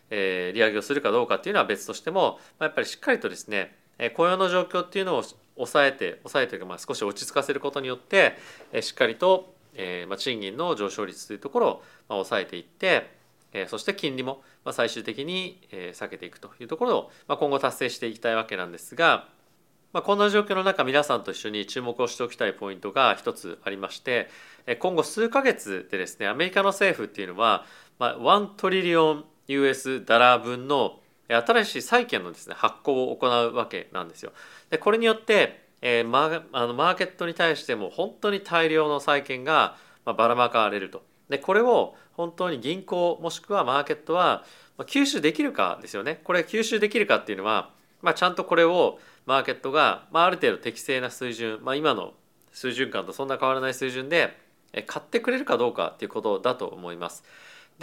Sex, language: male, Japanese